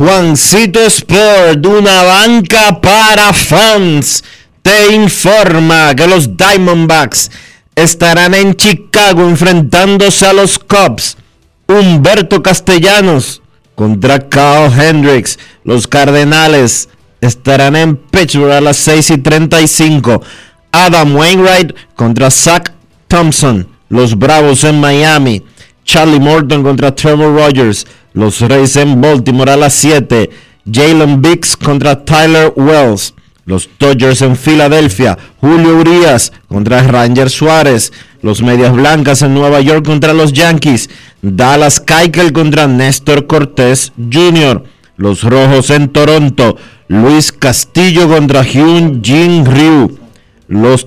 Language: Spanish